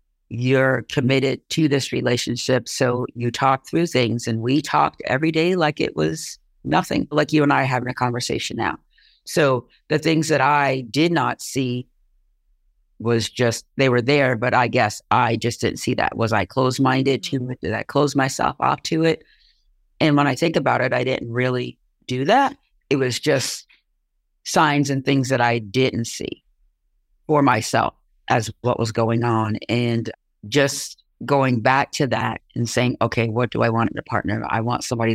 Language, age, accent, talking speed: English, 50-69, American, 185 wpm